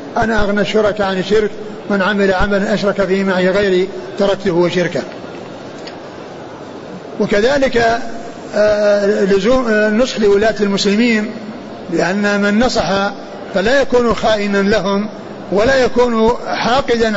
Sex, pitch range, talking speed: male, 210-250 Hz, 100 wpm